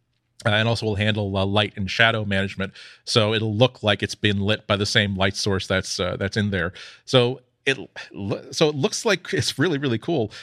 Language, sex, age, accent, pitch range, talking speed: English, male, 40-59, American, 105-125 Hz, 220 wpm